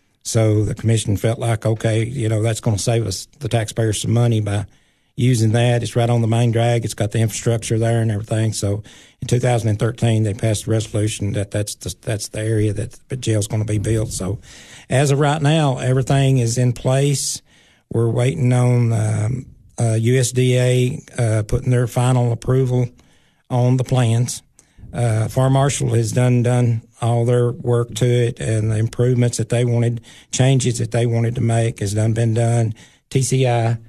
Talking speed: 185 wpm